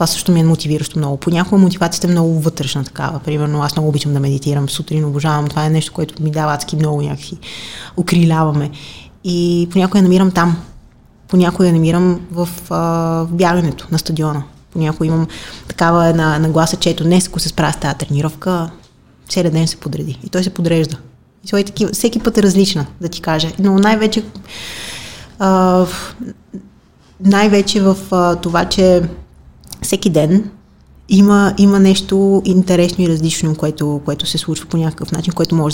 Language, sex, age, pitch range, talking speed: Bulgarian, female, 20-39, 150-180 Hz, 160 wpm